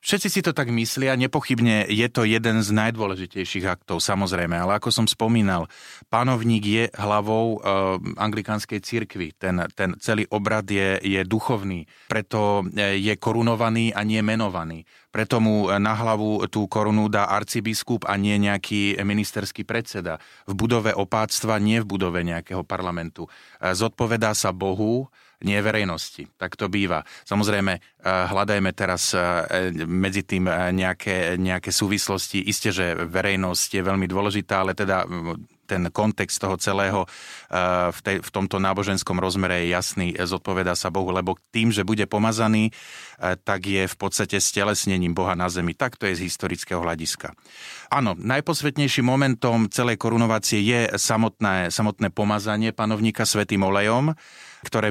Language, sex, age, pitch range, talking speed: Slovak, male, 30-49, 95-110 Hz, 135 wpm